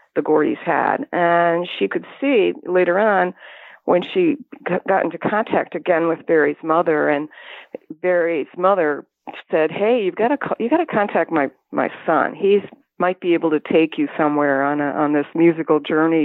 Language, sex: English, female